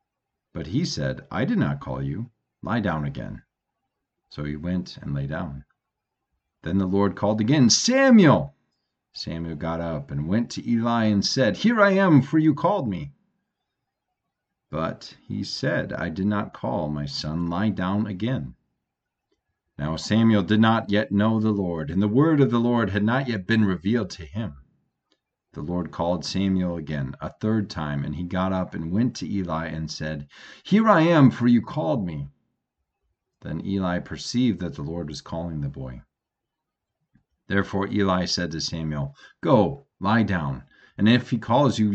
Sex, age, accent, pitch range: male, 40-59, American, 85-120 Hz